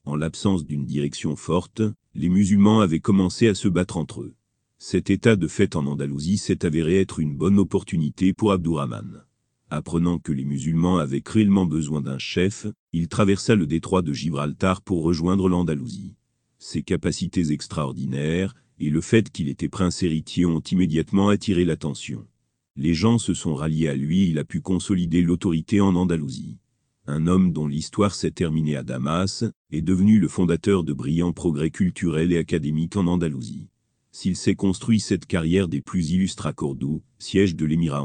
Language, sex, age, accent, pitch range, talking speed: French, male, 40-59, French, 80-100 Hz, 170 wpm